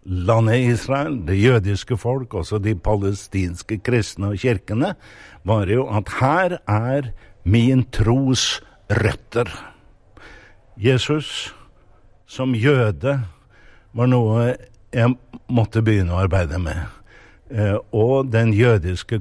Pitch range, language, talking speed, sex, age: 100-125 Hz, English, 95 wpm, male, 60-79